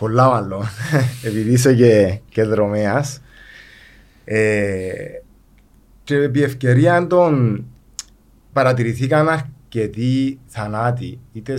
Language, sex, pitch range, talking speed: Greek, male, 110-135 Hz, 80 wpm